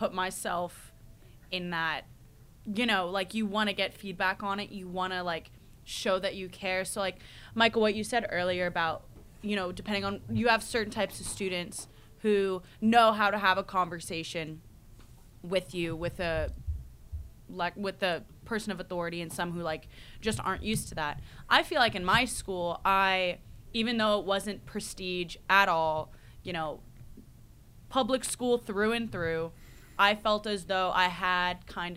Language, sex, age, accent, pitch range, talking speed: English, female, 20-39, American, 165-200 Hz, 175 wpm